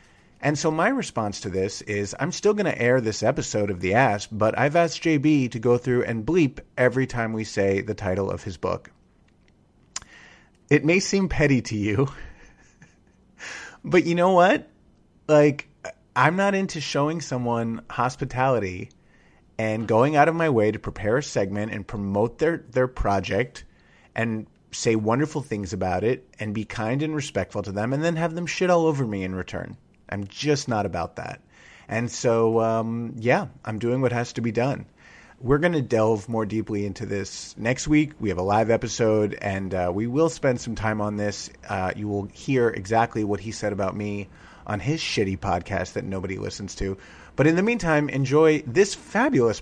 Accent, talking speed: American, 185 wpm